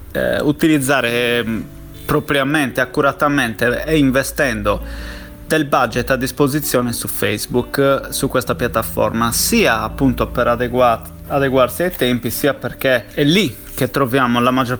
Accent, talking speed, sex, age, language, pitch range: native, 120 wpm, male, 30-49, Italian, 120-145 Hz